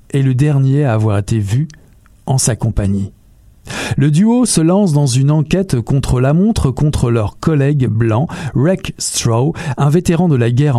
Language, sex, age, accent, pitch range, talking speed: French, male, 50-69, French, 120-165 Hz, 170 wpm